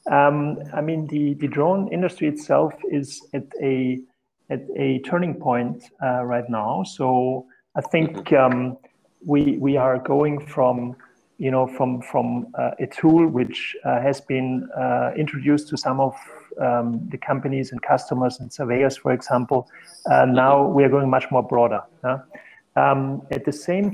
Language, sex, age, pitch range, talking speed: English, male, 40-59, 125-145 Hz, 165 wpm